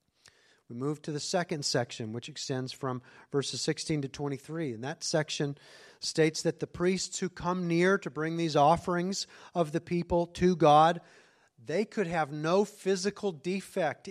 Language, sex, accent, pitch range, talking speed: English, male, American, 150-190 Hz, 160 wpm